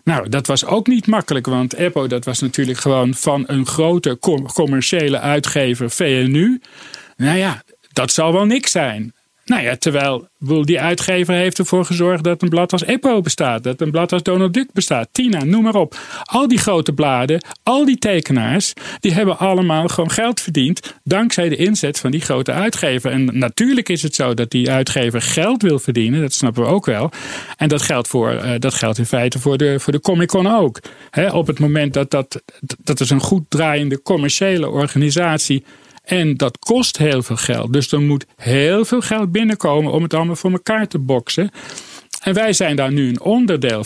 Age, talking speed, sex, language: 40-59, 190 wpm, male, Dutch